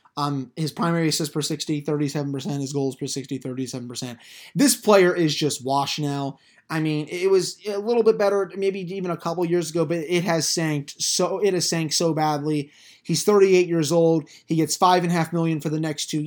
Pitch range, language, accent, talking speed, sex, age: 150-180 Hz, English, American, 205 wpm, male, 20-39